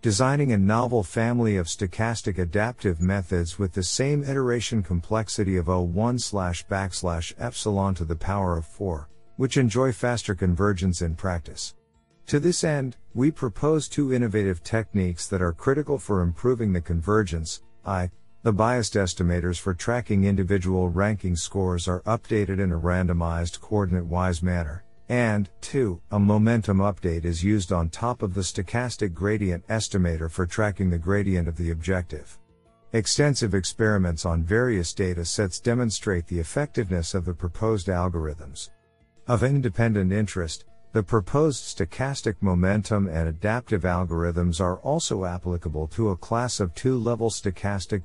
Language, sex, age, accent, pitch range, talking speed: English, male, 50-69, American, 90-115 Hz, 140 wpm